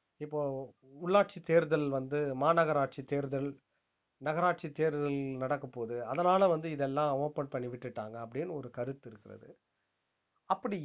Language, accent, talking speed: Tamil, native, 110 wpm